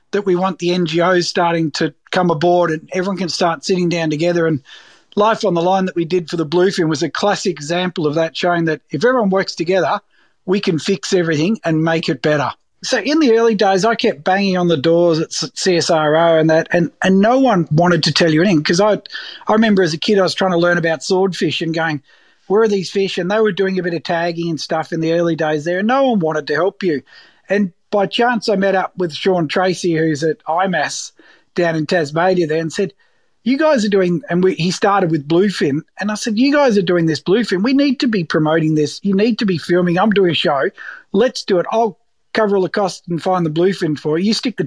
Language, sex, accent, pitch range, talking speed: English, male, Australian, 165-210 Hz, 245 wpm